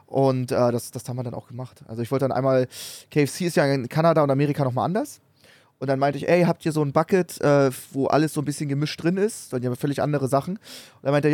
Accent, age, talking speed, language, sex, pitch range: German, 20-39, 270 wpm, German, male, 130-160 Hz